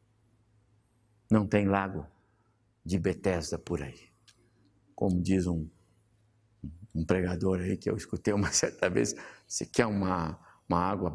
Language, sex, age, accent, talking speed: Portuguese, male, 60-79, Brazilian, 130 wpm